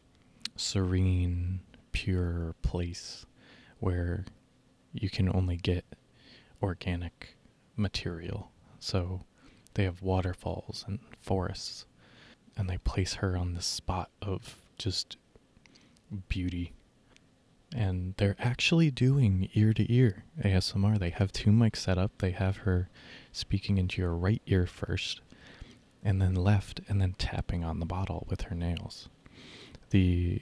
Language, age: English, 20-39